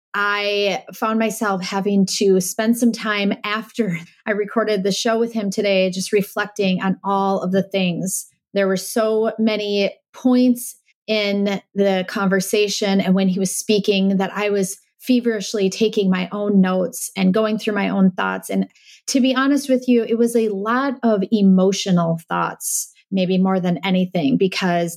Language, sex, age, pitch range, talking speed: English, female, 30-49, 180-210 Hz, 165 wpm